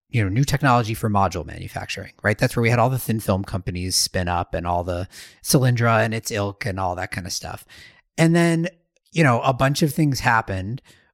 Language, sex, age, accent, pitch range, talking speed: English, male, 40-59, American, 100-140 Hz, 220 wpm